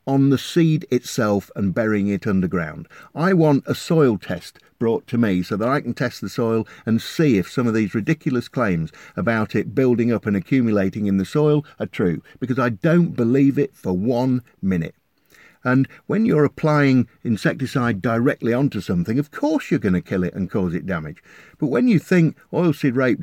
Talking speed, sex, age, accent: 195 wpm, male, 50-69, British